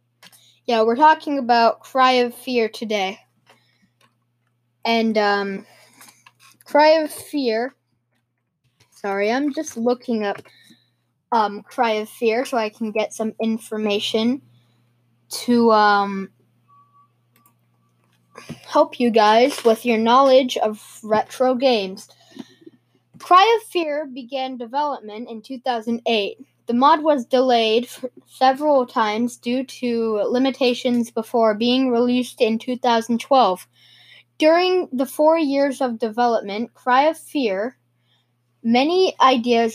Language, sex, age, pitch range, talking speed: English, female, 10-29, 205-265 Hz, 105 wpm